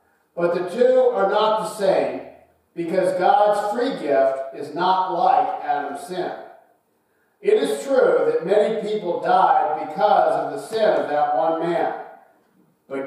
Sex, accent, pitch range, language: male, American, 160-240 Hz, English